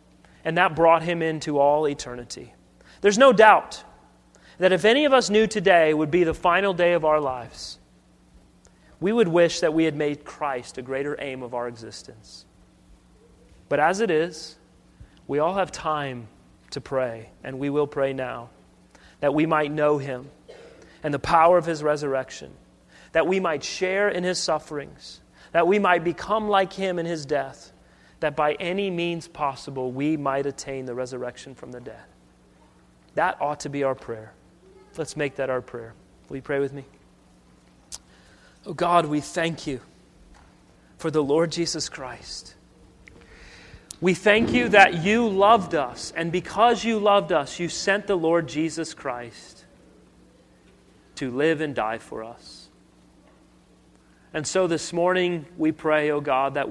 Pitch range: 130-175 Hz